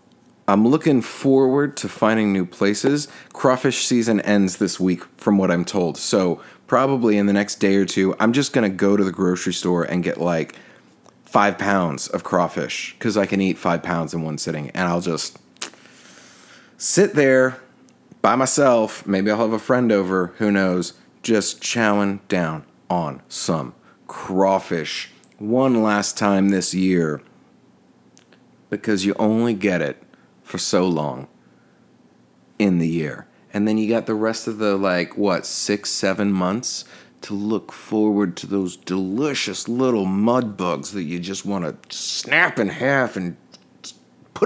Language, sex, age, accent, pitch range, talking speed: English, male, 30-49, American, 90-120 Hz, 160 wpm